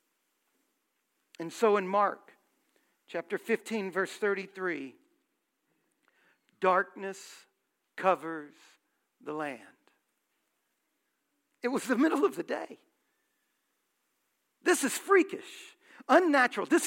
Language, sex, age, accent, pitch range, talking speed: English, male, 50-69, American, 215-300 Hz, 85 wpm